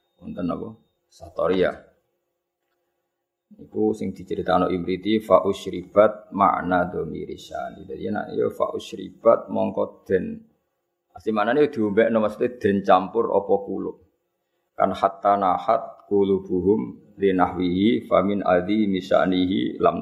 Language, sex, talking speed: Malay, male, 105 wpm